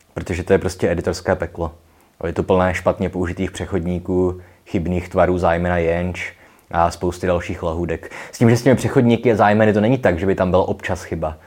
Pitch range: 85-100 Hz